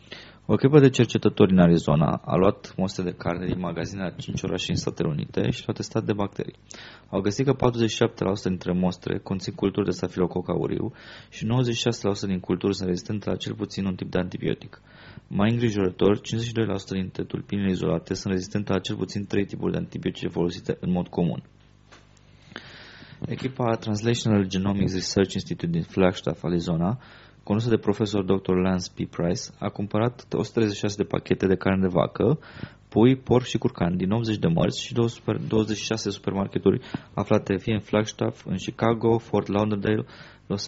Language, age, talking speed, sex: English, 20-39, 165 wpm, male